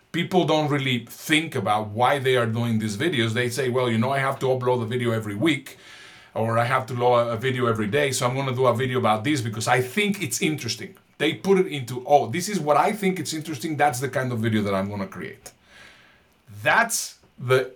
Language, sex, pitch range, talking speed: English, male, 115-150 Hz, 240 wpm